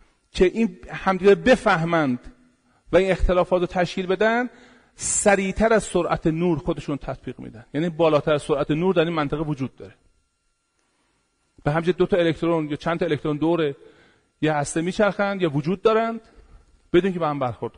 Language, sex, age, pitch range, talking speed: Persian, male, 40-59, 120-180 Hz, 160 wpm